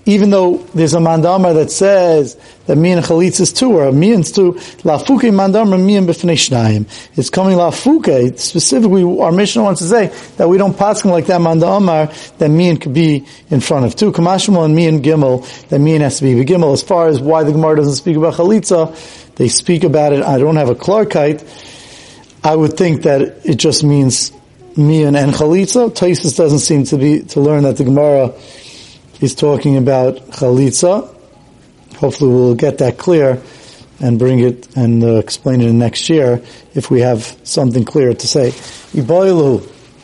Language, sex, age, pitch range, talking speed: English, male, 40-59, 135-185 Hz, 195 wpm